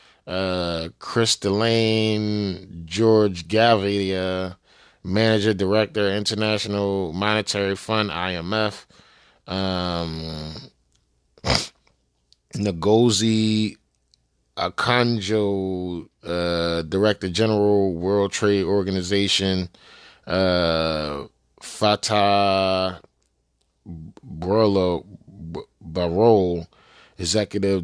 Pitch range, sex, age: 90-105 Hz, male, 20-39